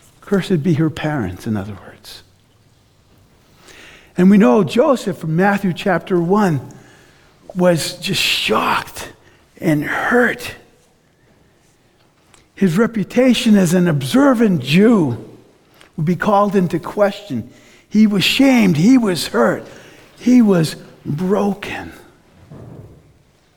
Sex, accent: male, American